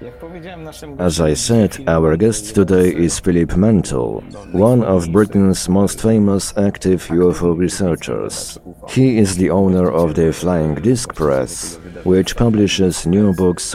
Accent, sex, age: French, male, 50-69